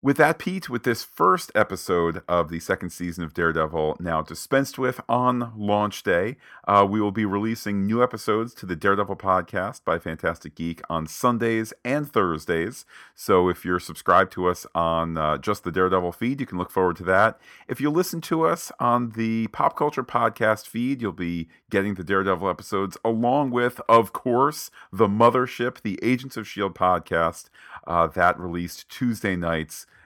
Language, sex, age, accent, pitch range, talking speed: English, male, 40-59, American, 85-115 Hz, 175 wpm